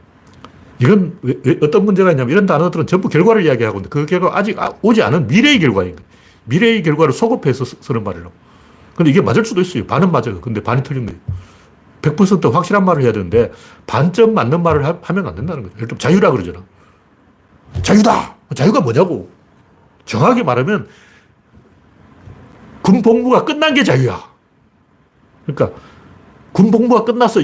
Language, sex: Korean, male